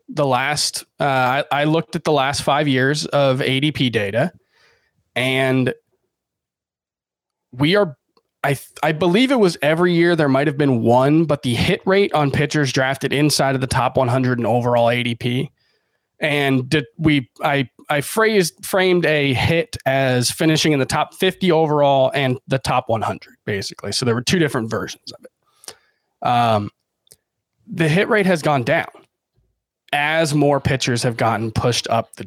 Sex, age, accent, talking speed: male, 20-39, American, 160 wpm